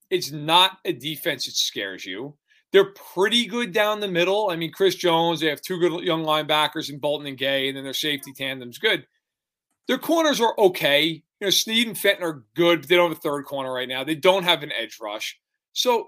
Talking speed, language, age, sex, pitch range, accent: 225 wpm, English, 40-59, male, 155-225 Hz, American